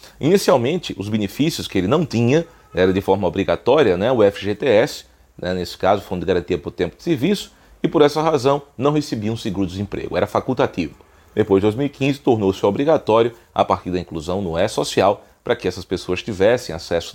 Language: Portuguese